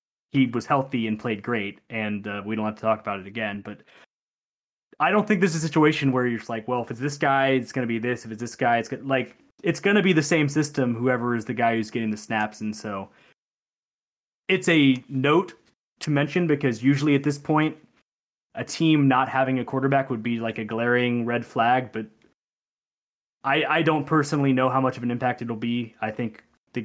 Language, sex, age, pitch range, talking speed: English, male, 20-39, 115-140 Hz, 225 wpm